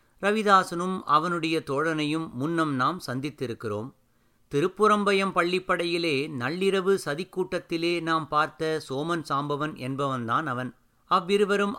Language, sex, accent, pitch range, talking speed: Tamil, male, native, 135-185 Hz, 85 wpm